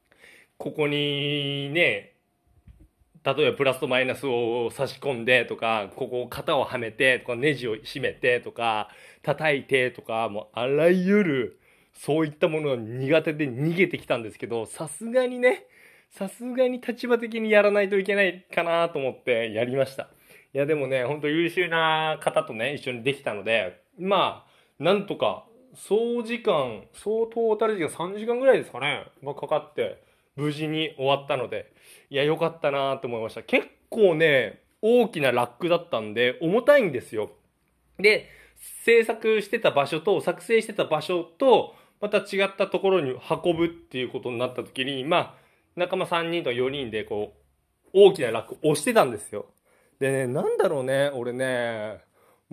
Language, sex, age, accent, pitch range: Japanese, male, 20-39, native, 135-210 Hz